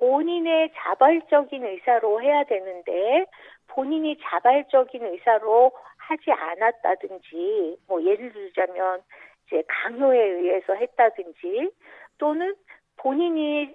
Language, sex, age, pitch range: Korean, female, 50-69, 220-345 Hz